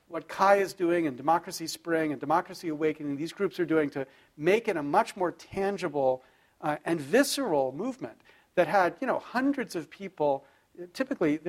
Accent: American